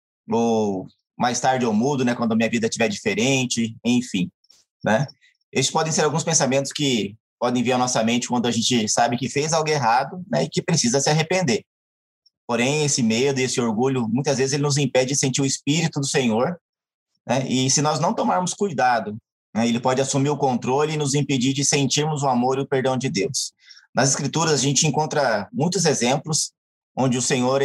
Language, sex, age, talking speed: Portuguese, male, 20-39, 200 wpm